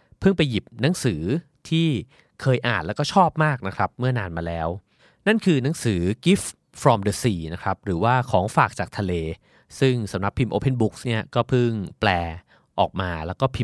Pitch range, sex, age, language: 95-130 Hz, male, 30-49, Thai